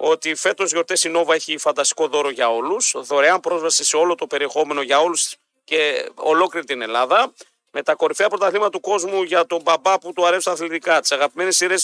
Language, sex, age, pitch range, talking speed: Greek, male, 40-59, 150-195 Hz, 200 wpm